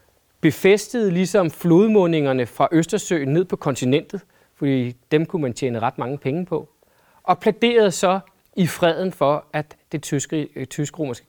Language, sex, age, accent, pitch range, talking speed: Danish, male, 30-49, native, 140-195 Hz, 140 wpm